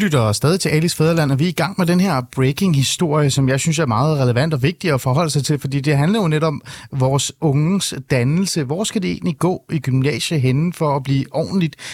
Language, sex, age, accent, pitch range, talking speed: Danish, male, 30-49, native, 130-175 Hz, 225 wpm